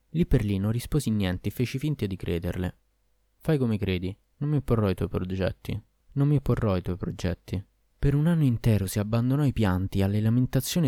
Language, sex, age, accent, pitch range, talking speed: Italian, male, 20-39, native, 95-125 Hz, 205 wpm